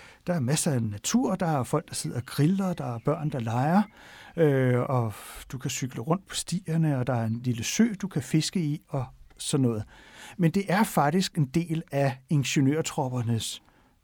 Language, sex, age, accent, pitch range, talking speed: Danish, male, 60-79, native, 130-175 Hz, 195 wpm